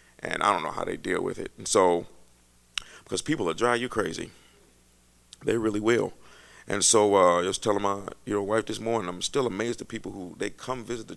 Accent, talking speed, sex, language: American, 220 wpm, male, English